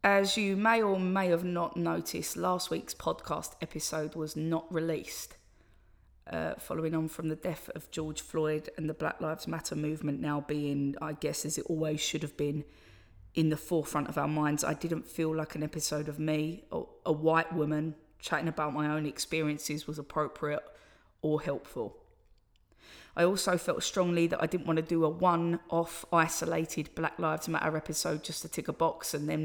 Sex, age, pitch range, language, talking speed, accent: female, 20-39, 155-170 Hz, English, 185 wpm, British